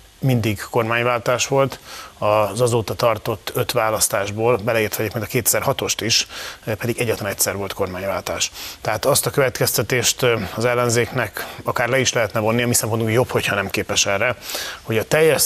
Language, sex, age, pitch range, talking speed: Hungarian, male, 30-49, 105-120 Hz, 160 wpm